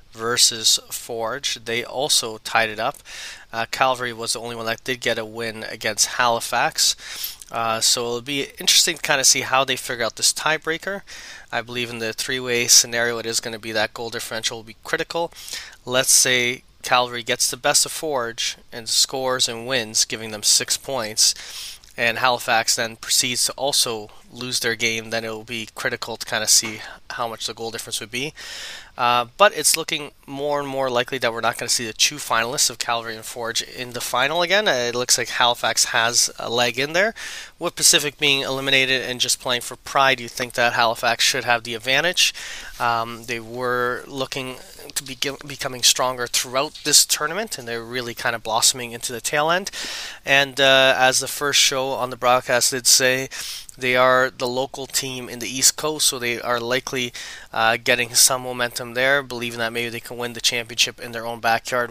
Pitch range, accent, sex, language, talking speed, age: 115-135 Hz, American, male, English, 200 wpm, 20-39